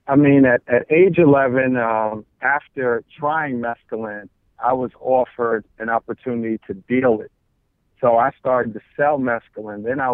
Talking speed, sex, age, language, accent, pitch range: 155 wpm, male, 50-69, English, American, 110-125 Hz